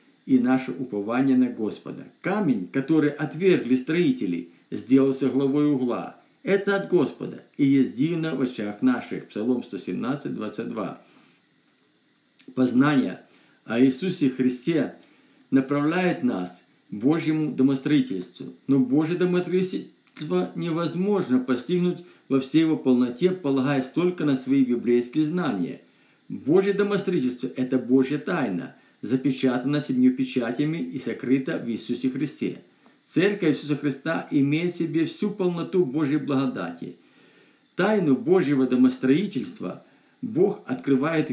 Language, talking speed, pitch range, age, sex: Russian, 110 wpm, 130-180 Hz, 50-69, male